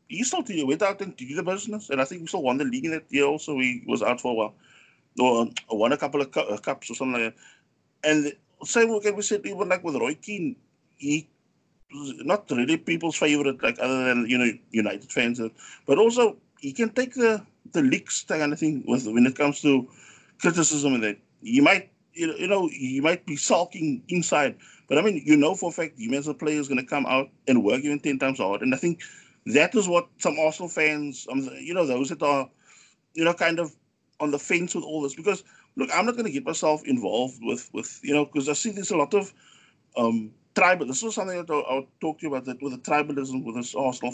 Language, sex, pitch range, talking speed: English, male, 135-195 Hz, 230 wpm